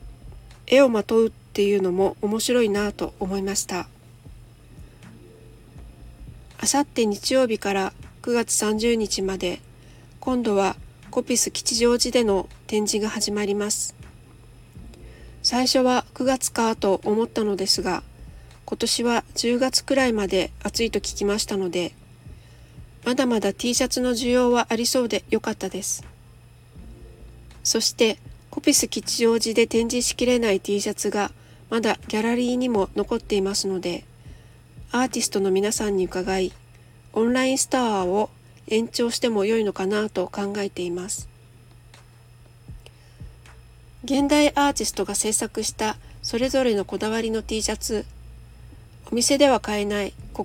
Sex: female